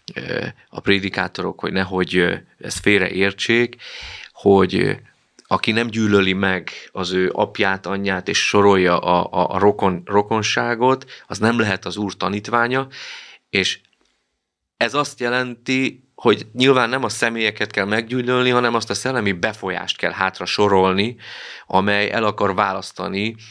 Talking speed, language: 135 wpm, Hungarian